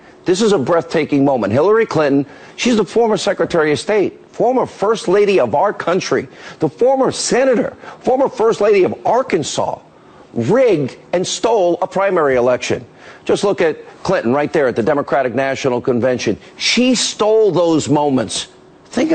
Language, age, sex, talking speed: English, 50-69, male, 155 wpm